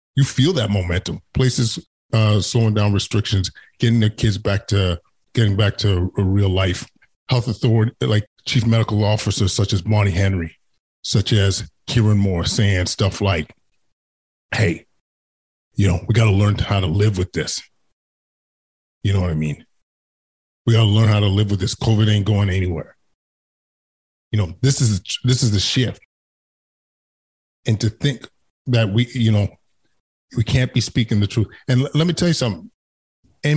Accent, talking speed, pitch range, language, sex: American, 170 wpm, 100-120 Hz, English, male